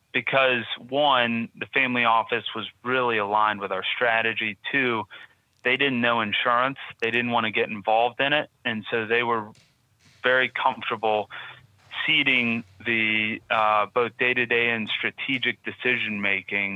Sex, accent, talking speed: male, American, 135 wpm